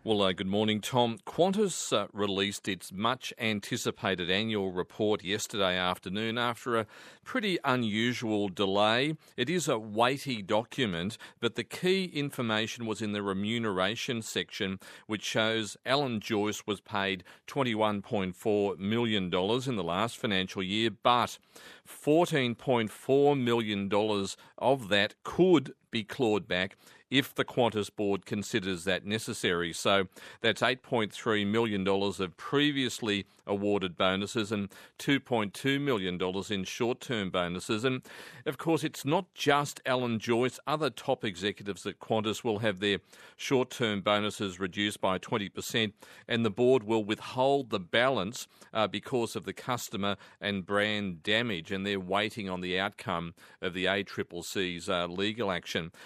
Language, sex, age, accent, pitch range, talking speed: English, male, 40-59, Australian, 100-120 Hz, 135 wpm